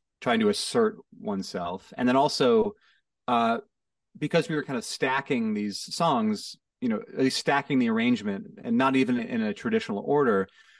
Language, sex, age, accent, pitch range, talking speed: English, male, 30-49, American, 135-225 Hz, 165 wpm